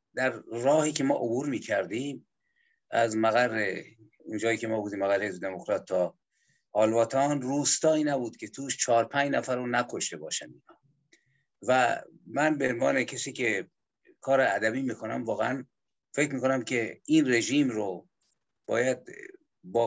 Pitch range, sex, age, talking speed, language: 115-140 Hz, male, 50-69, 145 wpm, Persian